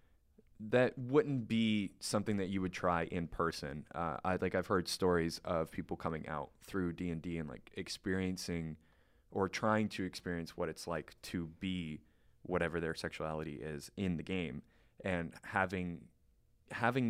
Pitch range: 80-95 Hz